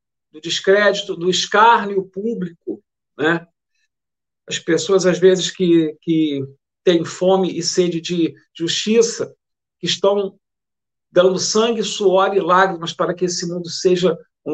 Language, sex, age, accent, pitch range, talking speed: Portuguese, male, 50-69, Brazilian, 160-195 Hz, 130 wpm